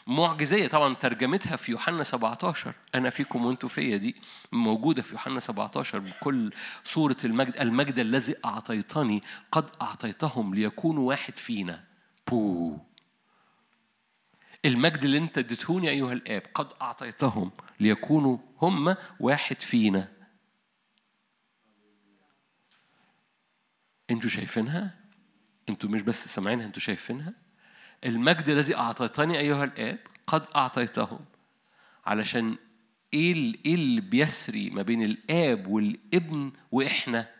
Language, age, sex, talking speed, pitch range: Arabic, 50-69, male, 105 wpm, 115-175 Hz